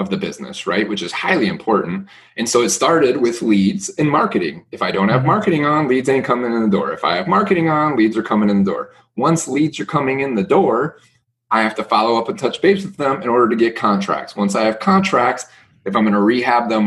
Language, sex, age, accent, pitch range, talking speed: English, male, 30-49, American, 105-135 Hz, 250 wpm